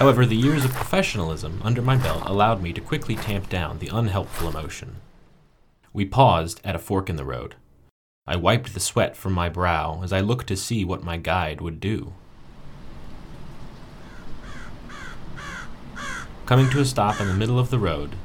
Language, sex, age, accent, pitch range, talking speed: English, male, 30-49, American, 90-115 Hz, 170 wpm